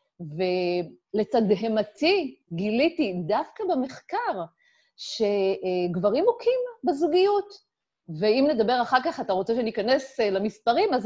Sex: female